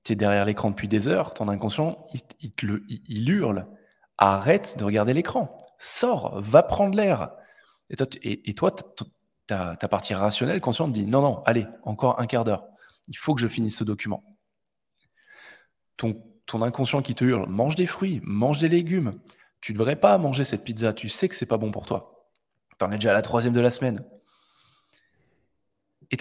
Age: 20-39